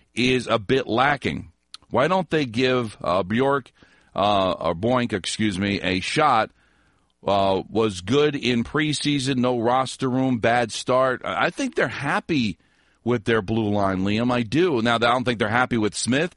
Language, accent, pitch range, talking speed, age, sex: English, American, 105-135 Hz, 170 wpm, 40-59, male